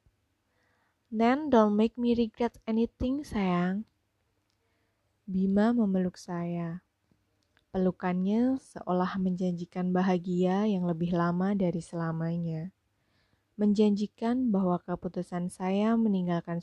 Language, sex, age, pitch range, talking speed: Indonesian, female, 20-39, 170-205 Hz, 85 wpm